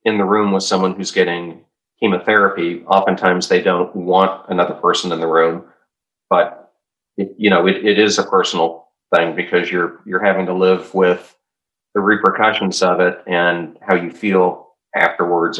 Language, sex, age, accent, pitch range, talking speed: English, male, 40-59, American, 85-95 Hz, 165 wpm